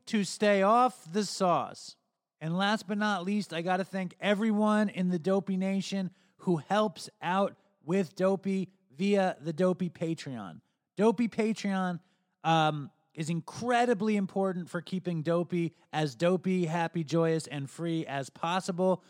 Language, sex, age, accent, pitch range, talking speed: English, male, 30-49, American, 155-195 Hz, 140 wpm